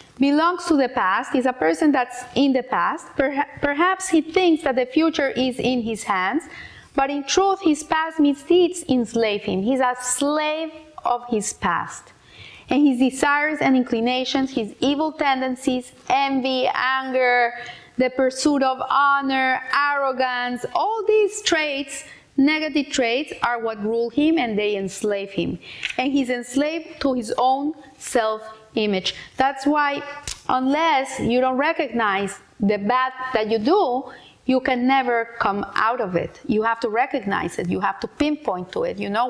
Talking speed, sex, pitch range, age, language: 155 wpm, female, 245-305 Hz, 30-49, English